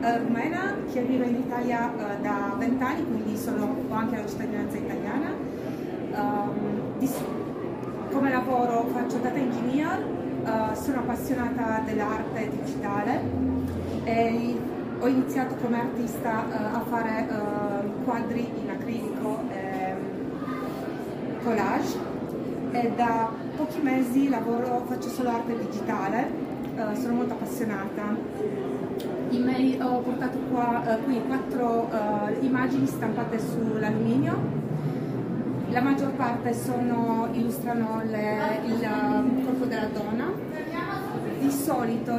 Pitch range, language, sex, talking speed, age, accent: 230-255 Hz, Italian, female, 100 wpm, 30-49, native